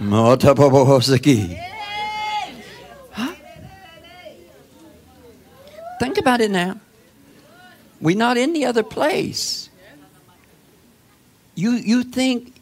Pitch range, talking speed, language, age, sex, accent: 220-255 Hz, 65 wpm, English, 60-79, male, American